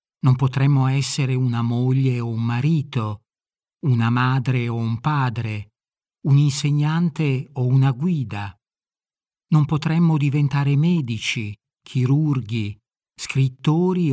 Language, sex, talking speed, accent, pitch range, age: Italian, male, 100 wpm, native, 125-150 Hz, 50-69